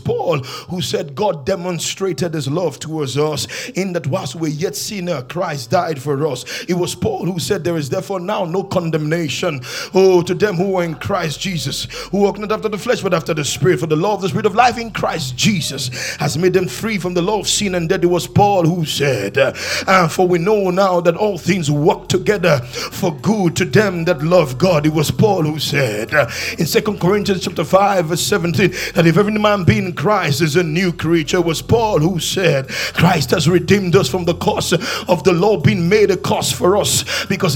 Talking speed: 220 wpm